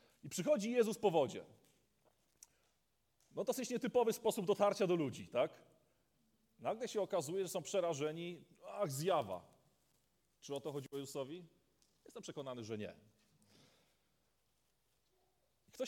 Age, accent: 30-49, native